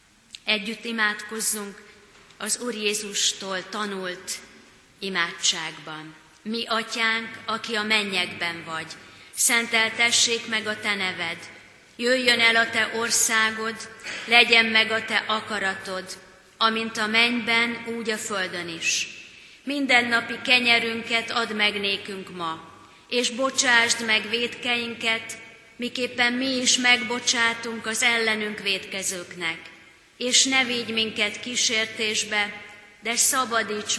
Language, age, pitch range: Hungarian, 30-49, 195-235 Hz